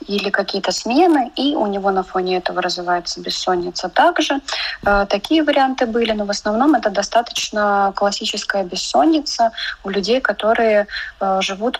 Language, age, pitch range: Russian, 20-39, 195-230 Hz